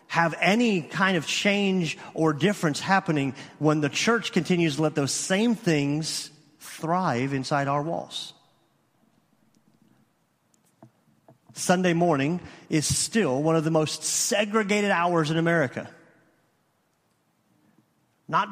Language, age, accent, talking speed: English, 40-59, American, 110 wpm